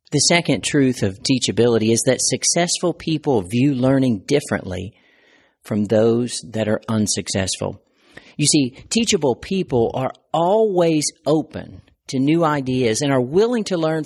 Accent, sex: American, male